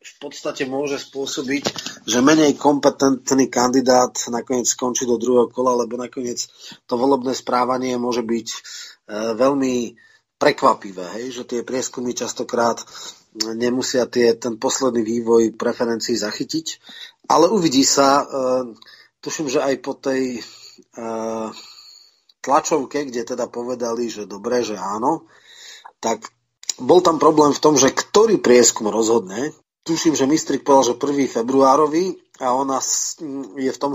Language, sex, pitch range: Czech, male, 120-145 Hz